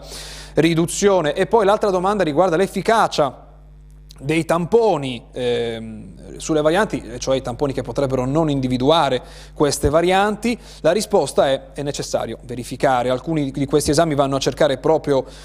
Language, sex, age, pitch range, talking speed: Italian, male, 30-49, 130-165 Hz, 135 wpm